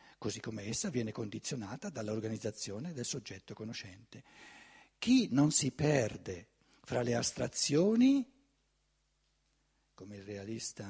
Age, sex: 60-79, male